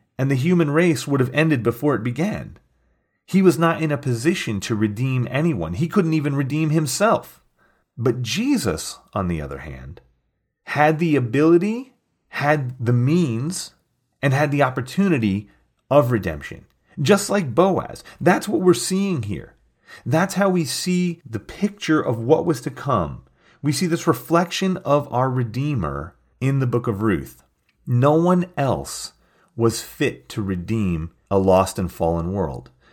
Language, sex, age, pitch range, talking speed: English, male, 40-59, 120-165 Hz, 155 wpm